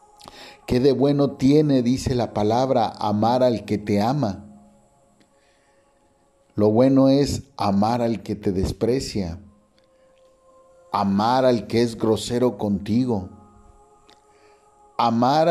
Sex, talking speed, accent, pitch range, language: male, 105 wpm, Mexican, 105-130 Hz, Spanish